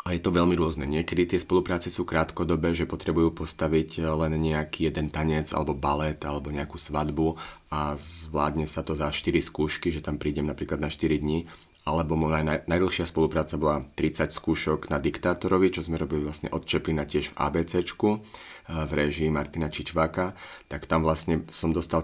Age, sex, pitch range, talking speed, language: 30-49, male, 75-80 Hz, 170 wpm, Czech